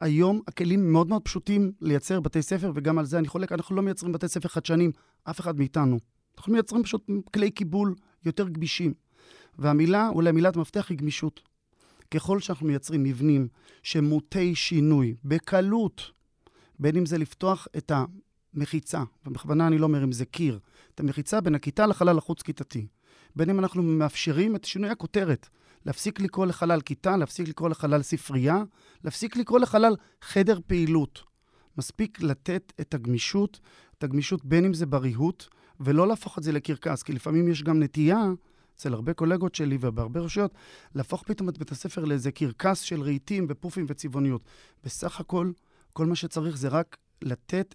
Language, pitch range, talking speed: Hebrew, 150-190 Hz, 160 wpm